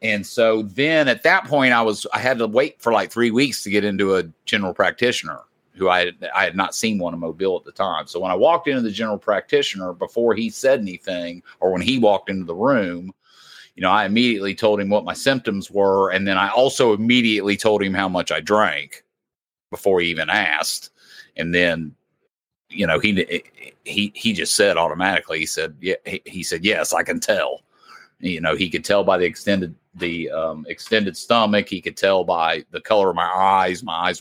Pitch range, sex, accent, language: 90-110 Hz, male, American, English